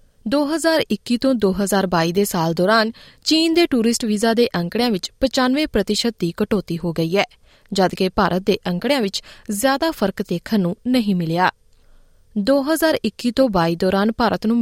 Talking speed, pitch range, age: 150 wpm, 190-265 Hz, 20-39